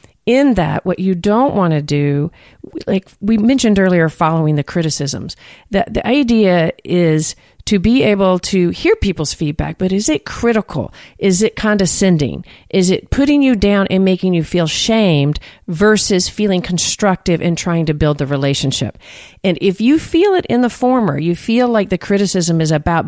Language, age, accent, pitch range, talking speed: English, 40-59, American, 155-205 Hz, 175 wpm